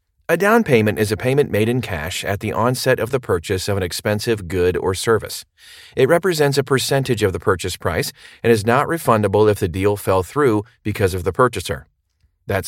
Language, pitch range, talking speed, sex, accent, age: English, 100-135 Hz, 205 wpm, male, American, 40-59